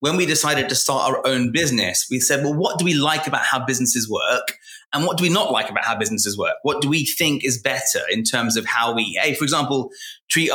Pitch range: 125-155 Hz